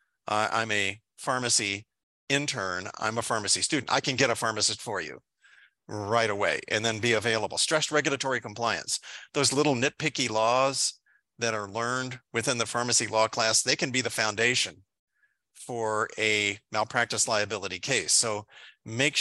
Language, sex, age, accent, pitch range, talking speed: English, male, 40-59, American, 110-130 Hz, 155 wpm